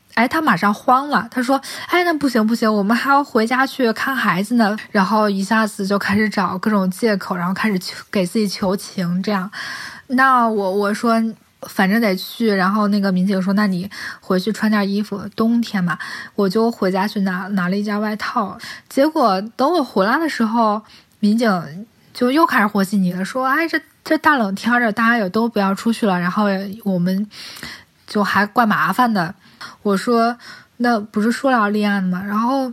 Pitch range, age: 200-250 Hz, 20-39